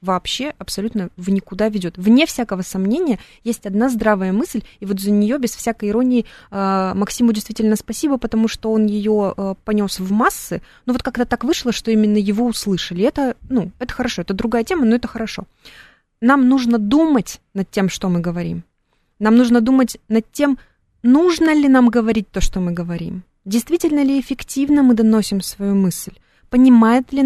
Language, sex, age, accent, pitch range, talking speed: Russian, female, 20-39, native, 190-230 Hz, 170 wpm